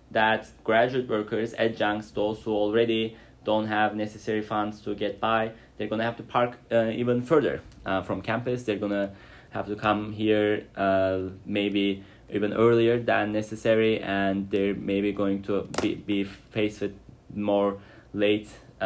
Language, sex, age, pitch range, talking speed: English, male, 20-39, 100-115 Hz, 160 wpm